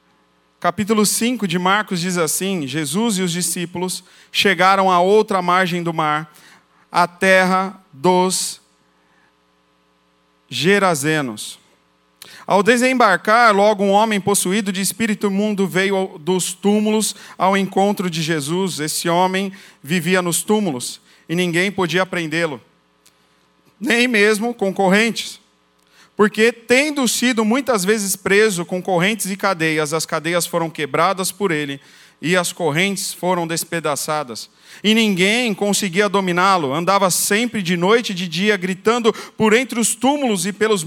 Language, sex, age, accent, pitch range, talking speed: Portuguese, male, 40-59, Brazilian, 170-220 Hz, 130 wpm